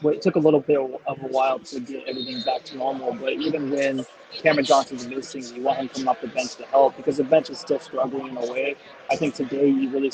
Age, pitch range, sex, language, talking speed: 20-39, 135-170 Hz, male, English, 265 wpm